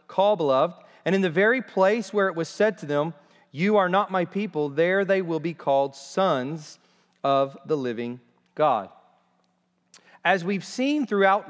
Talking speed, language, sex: 165 wpm, English, male